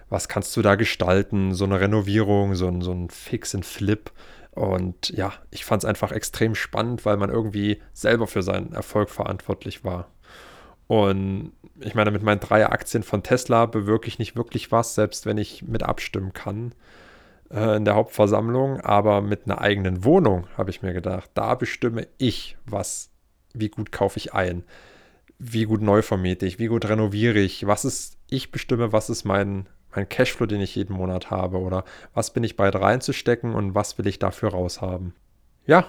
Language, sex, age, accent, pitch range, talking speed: German, male, 20-39, German, 100-115 Hz, 180 wpm